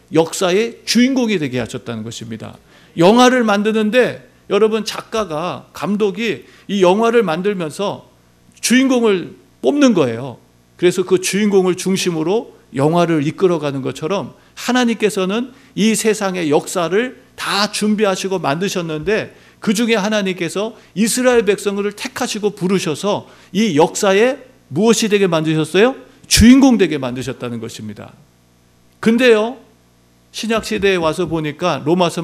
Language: Korean